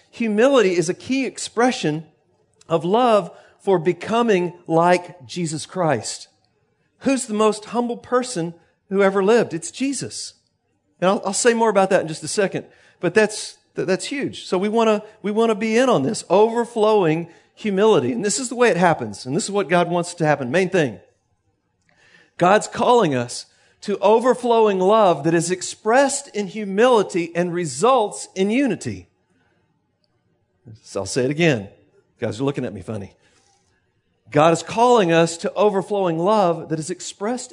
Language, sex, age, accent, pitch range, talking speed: English, male, 40-59, American, 155-215 Hz, 165 wpm